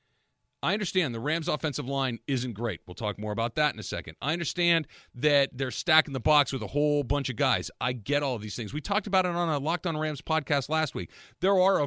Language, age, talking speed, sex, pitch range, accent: English, 40-59, 255 wpm, male, 120-155 Hz, American